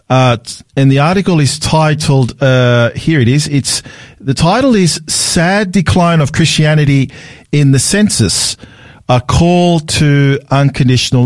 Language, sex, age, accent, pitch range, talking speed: English, male, 50-69, Australian, 120-145 Hz, 135 wpm